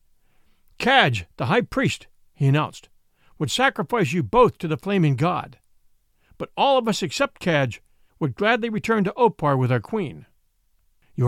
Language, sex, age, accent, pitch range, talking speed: English, male, 50-69, American, 160-245 Hz, 155 wpm